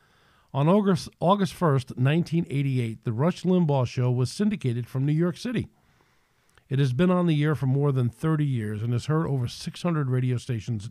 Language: English